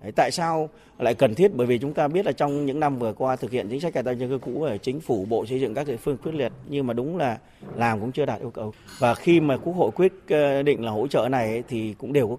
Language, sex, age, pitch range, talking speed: Vietnamese, male, 30-49, 120-160 Hz, 295 wpm